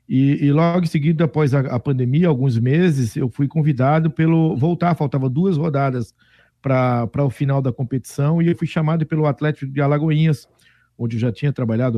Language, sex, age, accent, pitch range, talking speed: Portuguese, male, 50-69, Brazilian, 130-155 Hz, 185 wpm